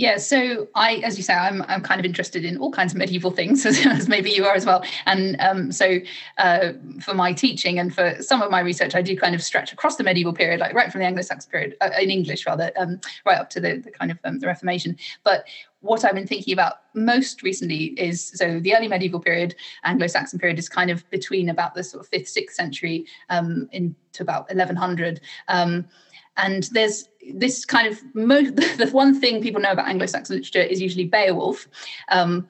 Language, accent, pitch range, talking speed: English, British, 180-215 Hz, 215 wpm